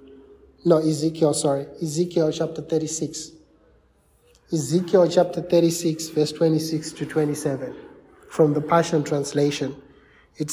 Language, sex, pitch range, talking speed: English, male, 150-180 Hz, 105 wpm